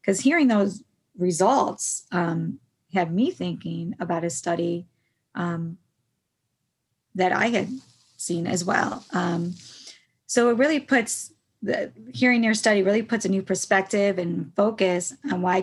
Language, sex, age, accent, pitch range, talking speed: English, female, 30-49, American, 175-225 Hz, 140 wpm